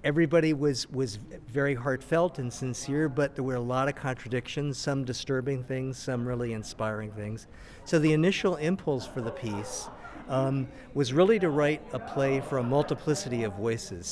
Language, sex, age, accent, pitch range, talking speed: English, male, 50-69, American, 105-140 Hz, 170 wpm